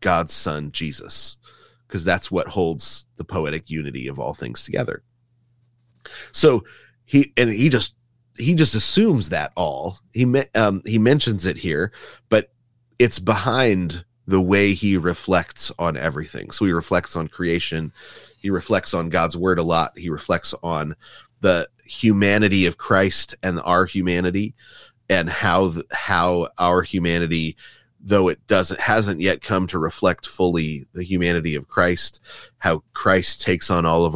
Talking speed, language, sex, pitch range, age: 150 wpm, English, male, 85-110 Hz, 30-49